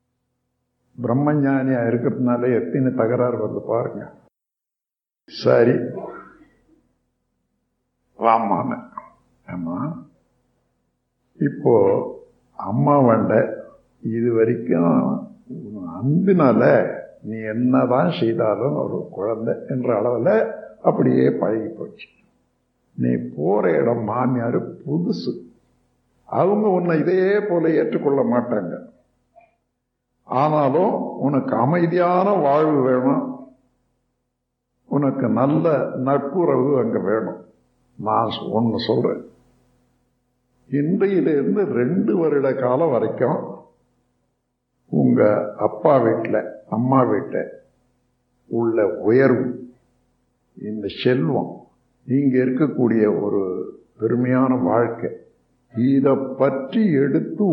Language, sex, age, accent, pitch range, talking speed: Tamil, male, 60-79, native, 125-150 Hz, 75 wpm